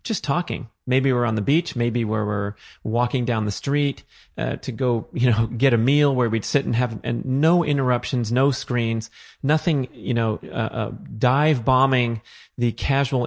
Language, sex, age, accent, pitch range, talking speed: English, male, 30-49, American, 105-120 Hz, 180 wpm